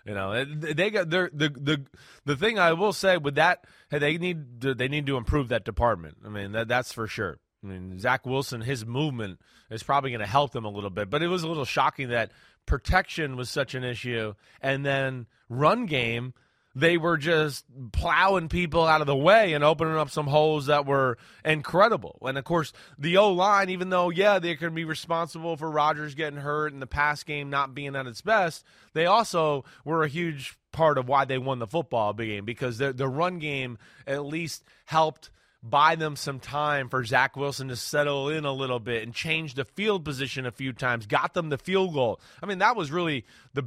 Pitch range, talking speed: 125-160 Hz, 210 wpm